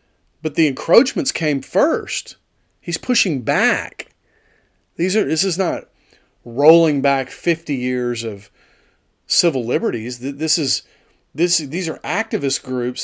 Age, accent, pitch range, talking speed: 40-59, American, 120-170 Hz, 125 wpm